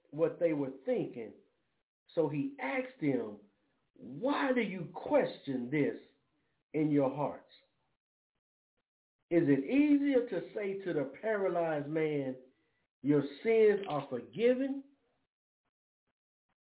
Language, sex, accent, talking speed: English, male, American, 105 wpm